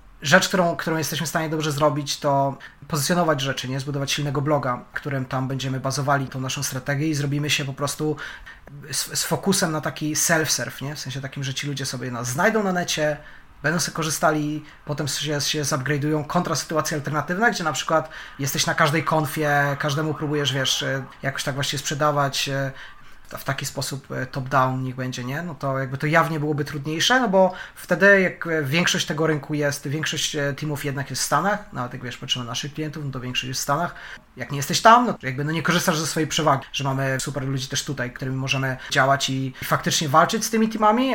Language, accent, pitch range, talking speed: Polish, native, 140-165 Hz, 200 wpm